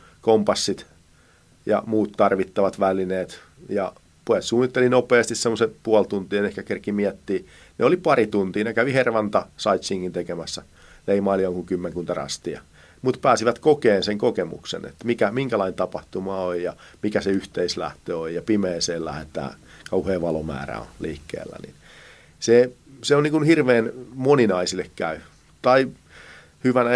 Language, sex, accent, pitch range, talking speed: Finnish, male, native, 95-120 Hz, 130 wpm